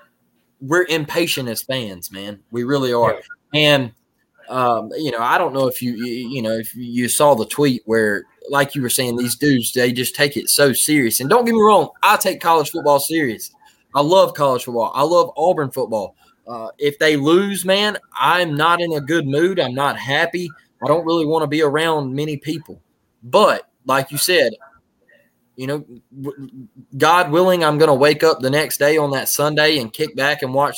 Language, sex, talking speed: English, male, 200 wpm